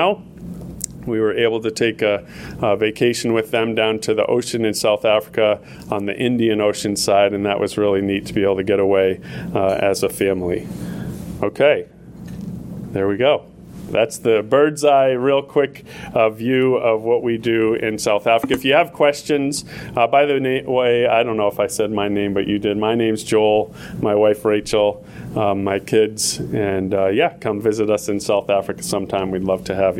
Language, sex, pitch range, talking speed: English, male, 105-140 Hz, 195 wpm